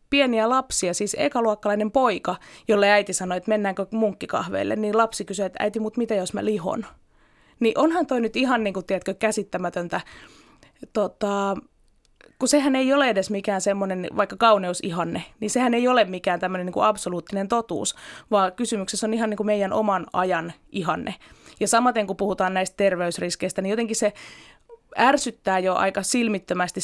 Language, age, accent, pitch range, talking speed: Finnish, 20-39, native, 185-230 Hz, 160 wpm